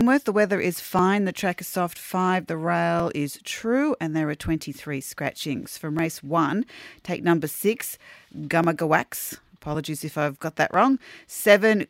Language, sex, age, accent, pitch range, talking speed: English, female, 40-59, Australian, 155-195 Hz, 160 wpm